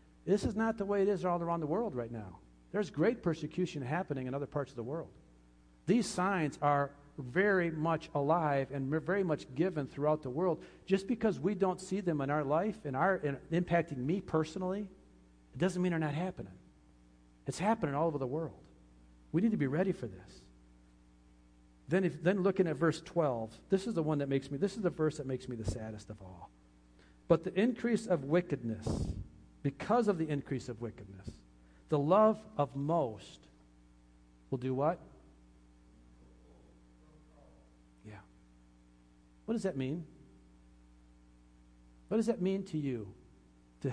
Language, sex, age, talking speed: English, male, 50-69, 170 wpm